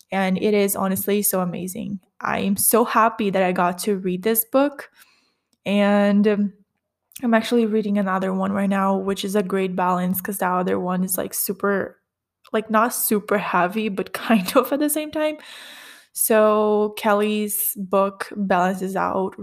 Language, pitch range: English, 190-220 Hz